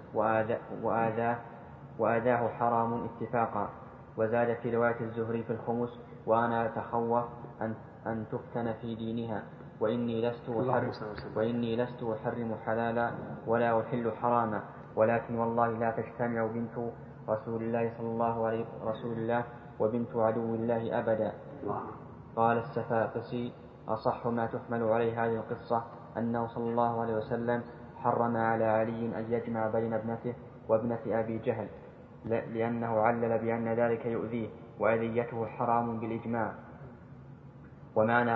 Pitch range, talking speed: 115-120 Hz, 120 wpm